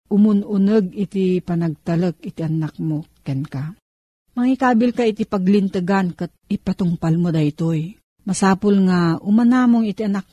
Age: 40-59